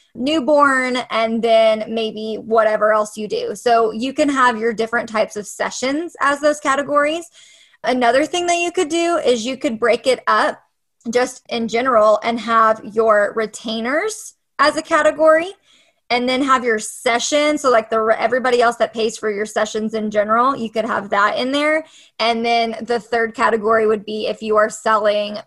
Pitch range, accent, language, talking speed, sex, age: 220-285 Hz, American, English, 180 wpm, female, 20-39